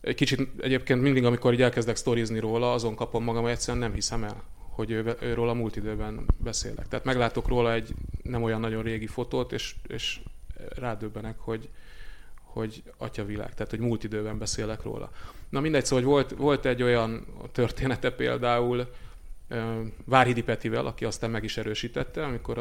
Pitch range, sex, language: 110-130 Hz, male, Hungarian